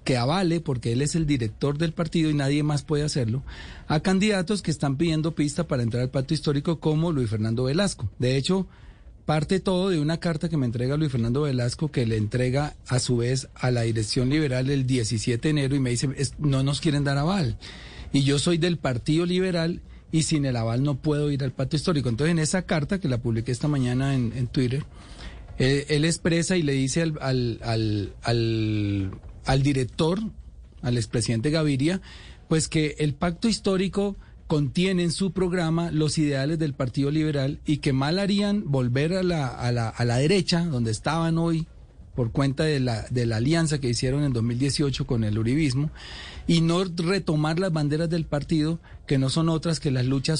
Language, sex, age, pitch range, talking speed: Spanish, male, 40-59, 125-165 Hz, 195 wpm